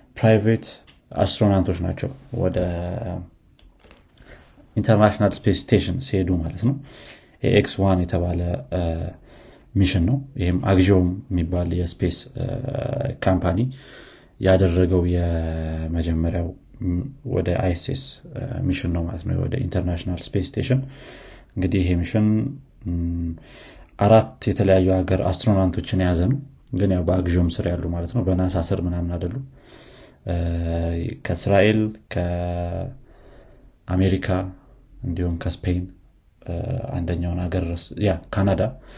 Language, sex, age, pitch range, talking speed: Amharic, male, 30-49, 90-110 Hz, 90 wpm